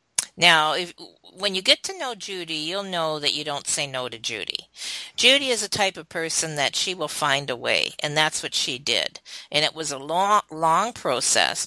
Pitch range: 145-190 Hz